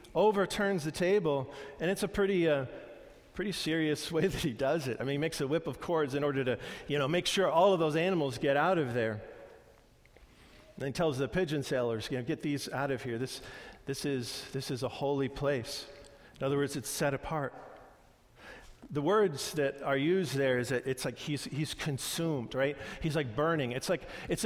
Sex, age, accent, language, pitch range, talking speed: male, 50-69, American, English, 140-185 Hz, 205 wpm